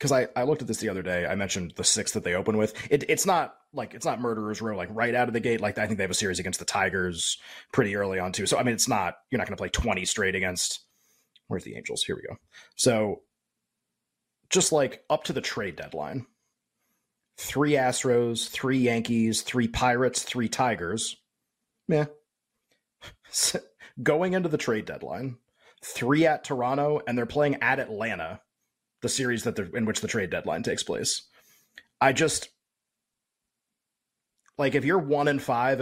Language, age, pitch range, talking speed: English, 30-49, 105-135 Hz, 190 wpm